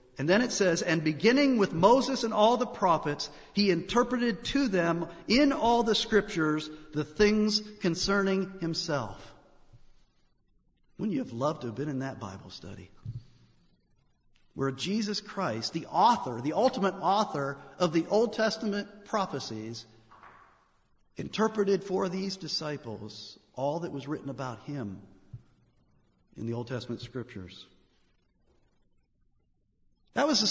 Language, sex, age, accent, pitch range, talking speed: English, male, 50-69, American, 145-220 Hz, 130 wpm